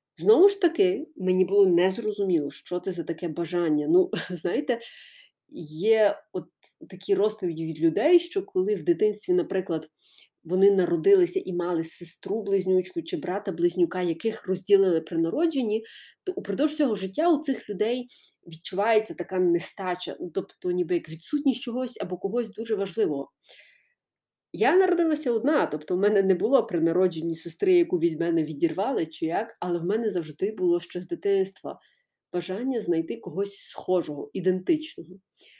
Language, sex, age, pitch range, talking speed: Ukrainian, female, 30-49, 180-295 Hz, 140 wpm